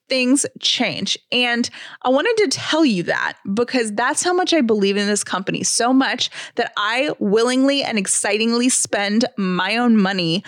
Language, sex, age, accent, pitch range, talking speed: English, female, 20-39, American, 195-240 Hz, 165 wpm